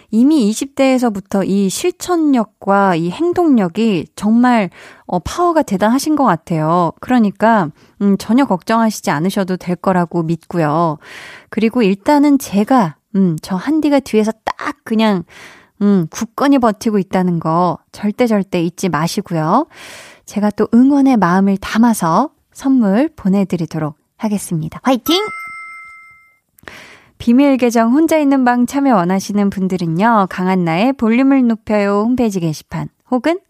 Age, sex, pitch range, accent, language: 20-39, female, 185-260 Hz, native, Korean